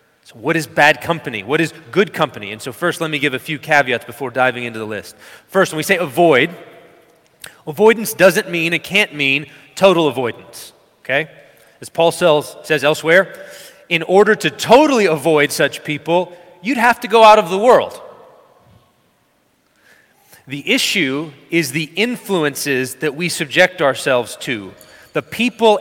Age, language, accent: 30-49, English, American